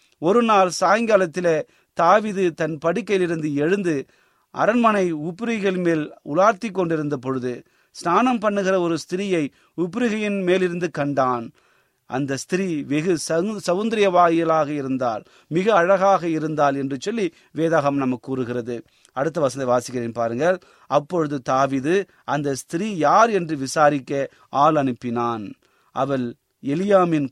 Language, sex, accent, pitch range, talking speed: Tamil, male, native, 130-175 Hz, 100 wpm